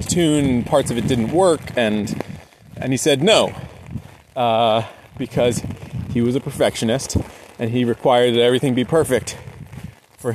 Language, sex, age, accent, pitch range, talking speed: English, male, 30-49, American, 115-135 Hz, 145 wpm